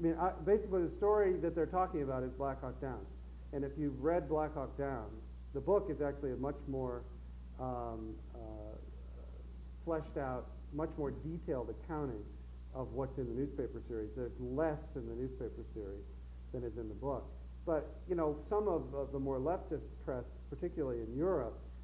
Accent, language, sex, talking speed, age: American, English, male, 180 wpm, 50-69